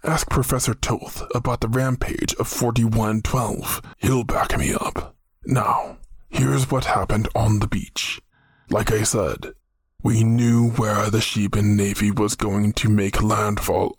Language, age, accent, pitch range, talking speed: English, 20-39, American, 105-120 Hz, 145 wpm